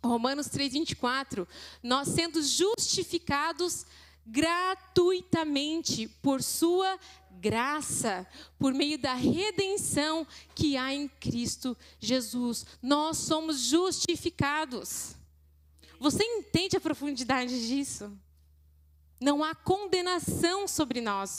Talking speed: 85 wpm